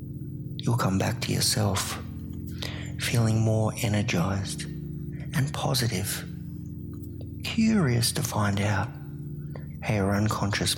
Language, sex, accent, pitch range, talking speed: English, male, Australian, 105-135 Hz, 95 wpm